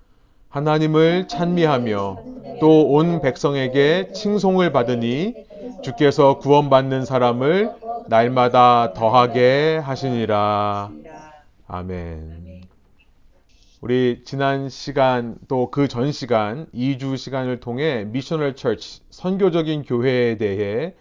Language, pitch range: Korean, 115-155 Hz